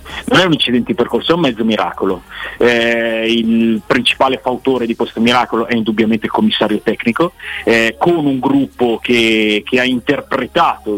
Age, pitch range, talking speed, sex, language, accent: 40-59, 120-175 Hz, 165 wpm, male, Italian, native